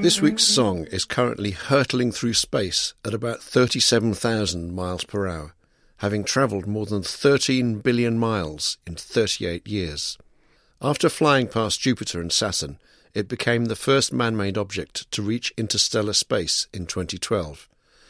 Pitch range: 95-115 Hz